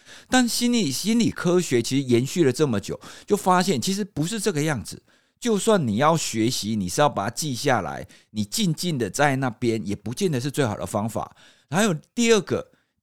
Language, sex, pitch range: Chinese, male, 110-170 Hz